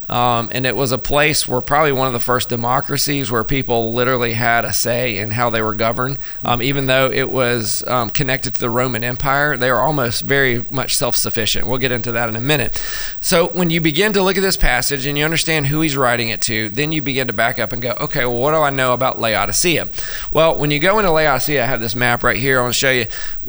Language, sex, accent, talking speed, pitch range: English, male, American, 250 wpm, 120-140 Hz